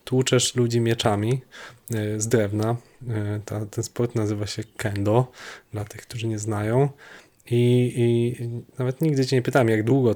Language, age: Polish, 20-39